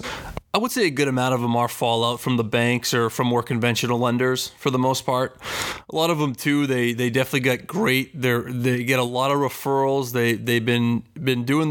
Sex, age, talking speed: male, 20-39, 225 wpm